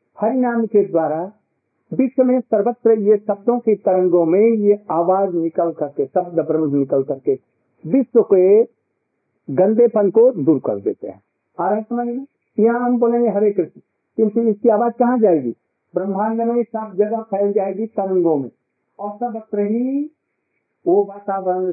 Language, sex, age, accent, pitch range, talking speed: Hindi, male, 50-69, native, 180-230 Hz, 140 wpm